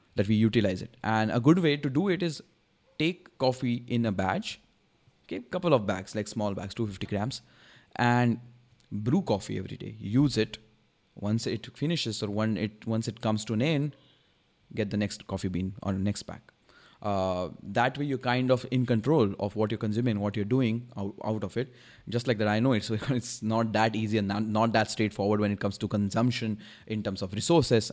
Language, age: English, 20-39